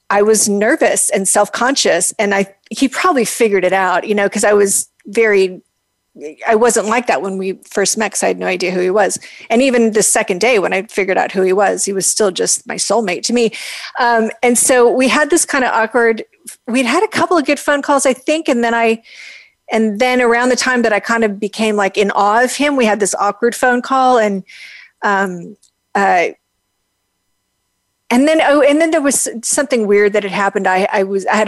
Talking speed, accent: 225 wpm, American